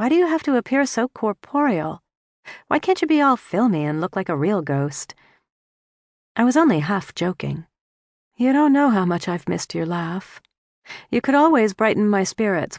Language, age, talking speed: English, 40-59, 190 wpm